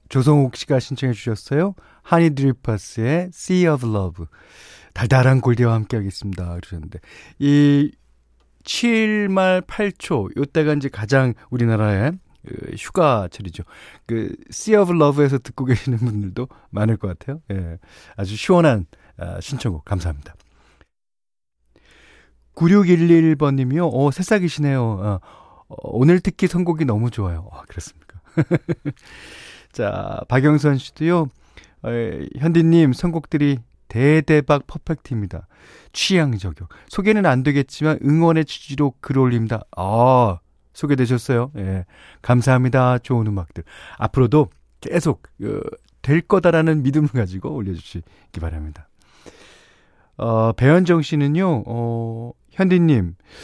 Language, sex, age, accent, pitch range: Korean, male, 40-59, native, 105-155 Hz